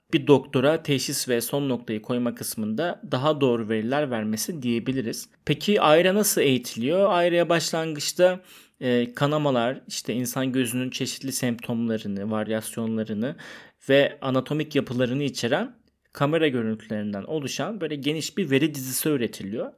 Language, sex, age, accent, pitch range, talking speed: Turkish, male, 30-49, native, 125-160 Hz, 120 wpm